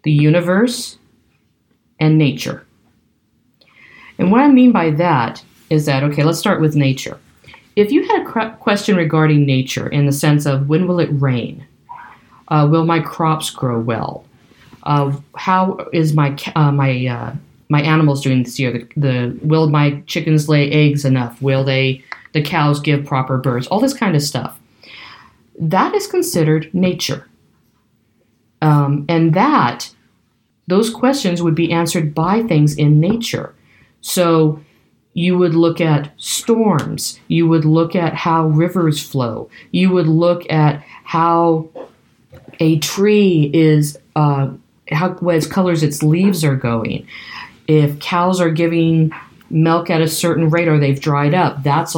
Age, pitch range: 50-69, 145-175 Hz